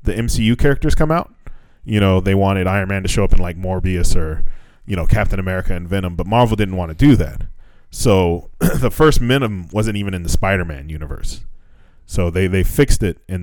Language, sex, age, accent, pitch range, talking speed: English, male, 20-39, American, 90-110 Hz, 210 wpm